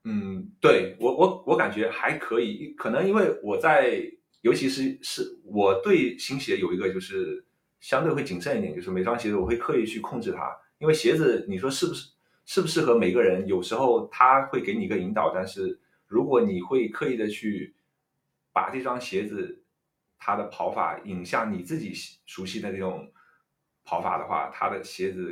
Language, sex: Chinese, male